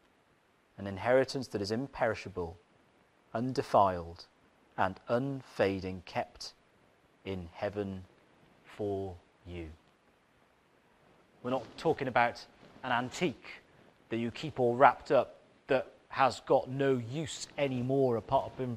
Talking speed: 105 wpm